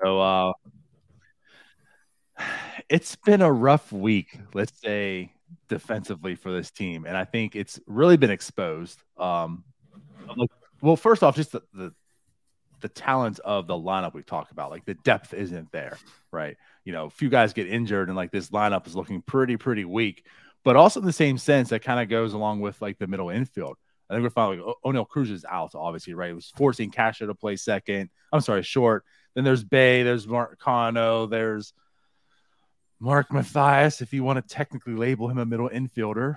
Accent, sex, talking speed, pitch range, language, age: American, male, 190 wpm, 105-135 Hz, English, 30-49